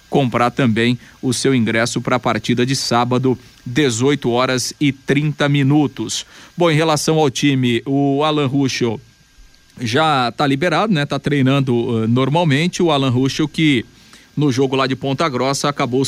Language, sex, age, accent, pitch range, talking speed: Portuguese, male, 40-59, Brazilian, 130-160 Hz, 155 wpm